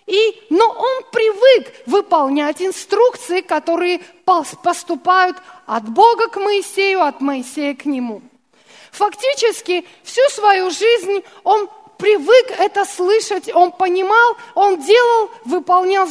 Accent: native